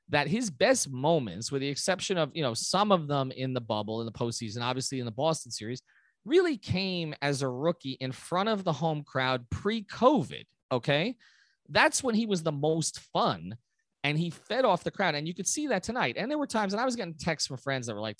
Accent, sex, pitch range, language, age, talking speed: American, male, 130-190 Hz, English, 30-49, 230 wpm